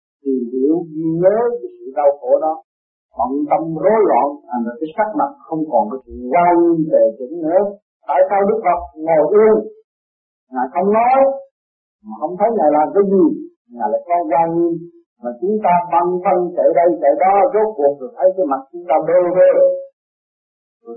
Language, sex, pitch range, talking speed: Vietnamese, male, 150-240 Hz, 185 wpm